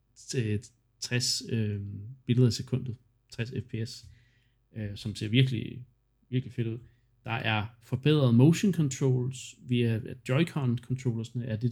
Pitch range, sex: 115-130 Hz, male